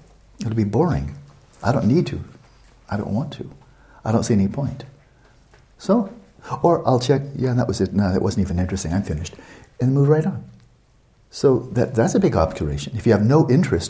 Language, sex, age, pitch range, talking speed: English, male, 60-79, 85-115 Hz, 200 wpm